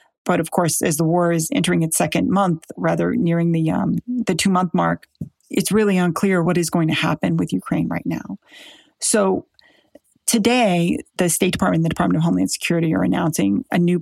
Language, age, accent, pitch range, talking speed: English, 40-59, American, 165-200 Hz, 195 wpm